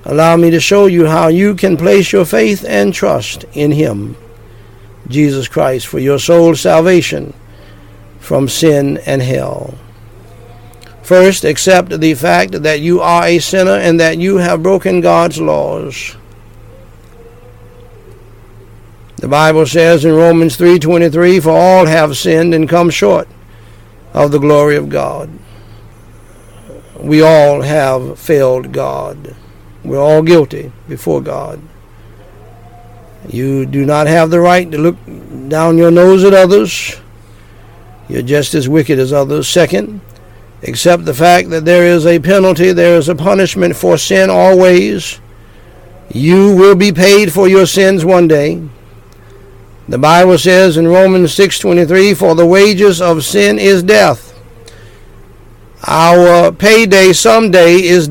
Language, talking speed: English, 135 wpm